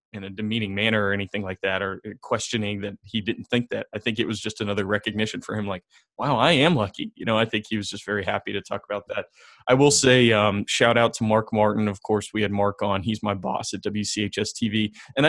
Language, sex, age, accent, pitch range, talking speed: English, male, 20-39, American, 105-135 Hz, 250 wpm